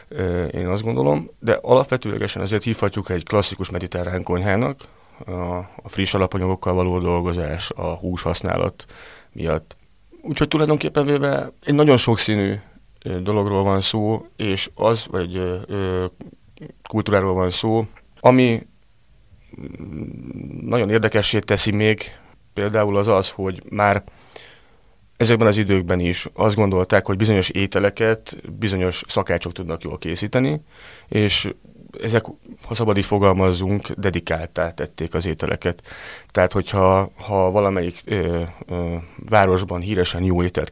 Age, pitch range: 30-49, 90-110 Hz